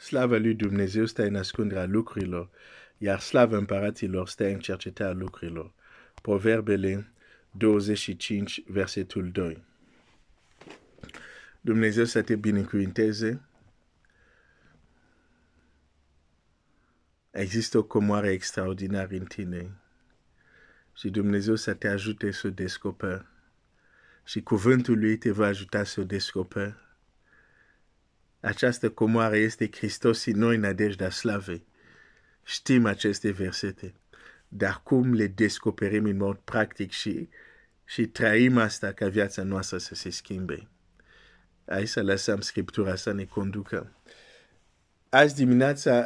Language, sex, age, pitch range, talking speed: Romanian, male, 50-69, 95-115 Hz, 110 wpm